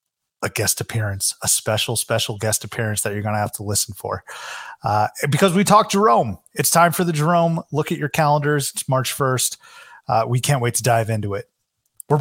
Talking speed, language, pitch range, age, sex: 205 wpm, English, 115-150 Hz, 30-49, male